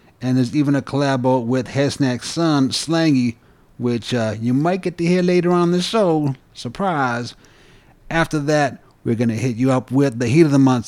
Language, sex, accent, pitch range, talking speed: English, male, American, 120-145 Hz, 195 wpm